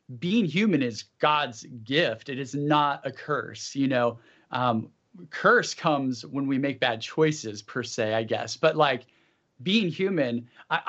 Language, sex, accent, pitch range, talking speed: English, male, American, 130-170 Hz, 160 wpm